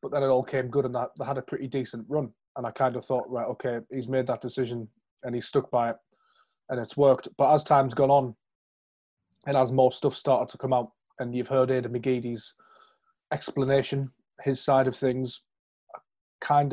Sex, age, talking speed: male, 30-49, 205 wpm